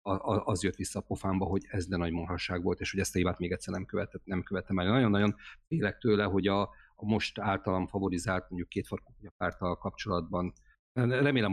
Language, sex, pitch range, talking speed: Hungarian, male, 95-110 Hz, 195 wpm